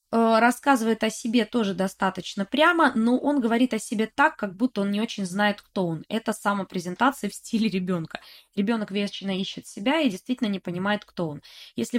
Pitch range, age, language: 190-240 Hz, 20-39, Russian